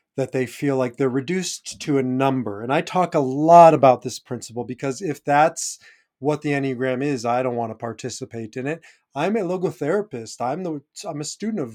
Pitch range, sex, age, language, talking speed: 130-155 Hz, male, 30-49, English, 205 wpm